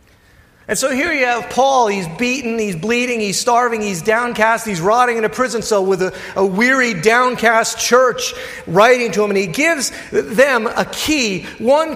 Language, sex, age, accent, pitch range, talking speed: English, male, 40-59, American, 150-255 Hz, 180 wpm